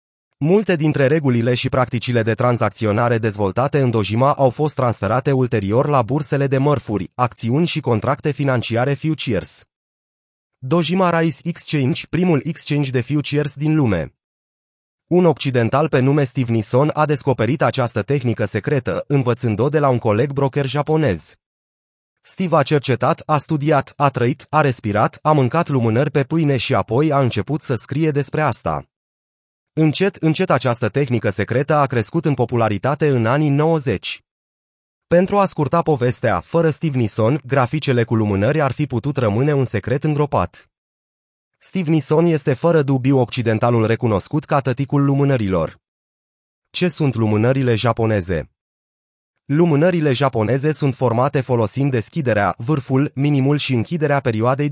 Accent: native